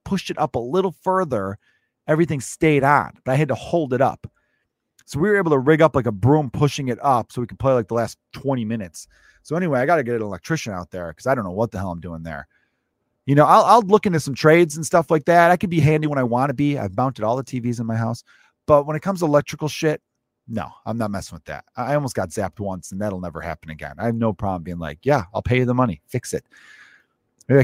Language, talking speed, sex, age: English, 270 wpm, male, 30-49